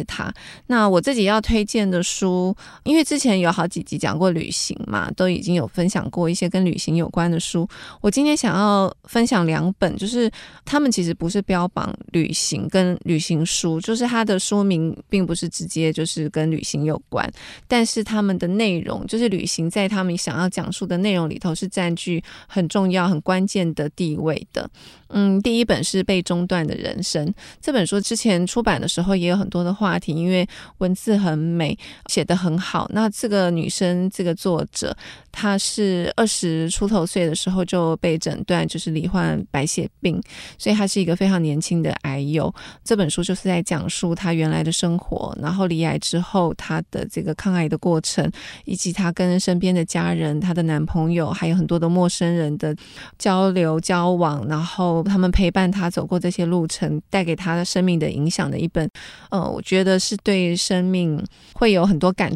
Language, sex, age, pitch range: Chinese, female, 20-39, 165-195 Hz